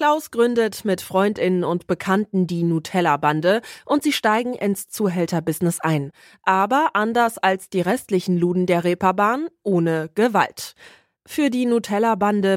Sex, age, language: female, 20-39, German